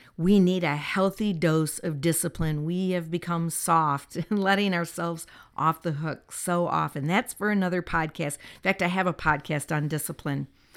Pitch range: 160-195 Hz